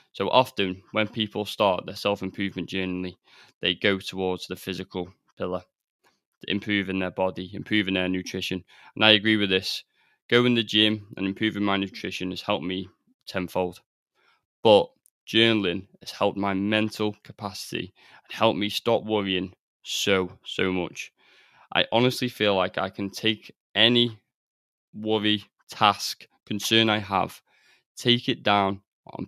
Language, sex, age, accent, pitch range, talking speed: English, male, 20-39, British, 95-105 Hz, 140 wpm